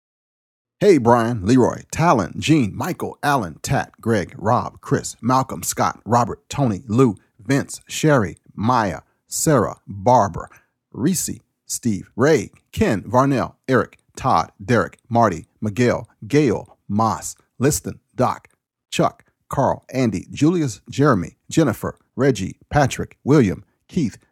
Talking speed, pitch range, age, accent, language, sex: 110 wpm, 100-135 Hz, 40-59, American, English, male